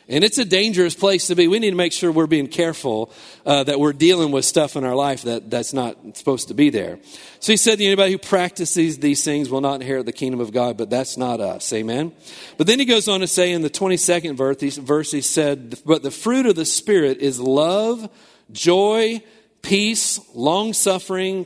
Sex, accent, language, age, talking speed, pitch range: male, American, English, 40-59, 220 wpm, 145-195 Hz